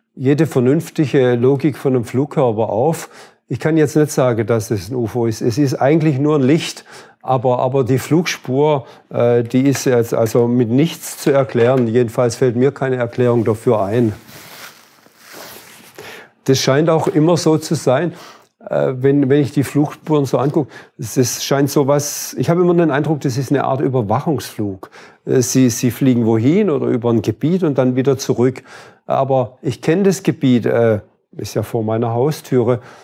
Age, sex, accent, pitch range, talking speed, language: 50-69, male, German, 125-155 Hz, 175 wpm, German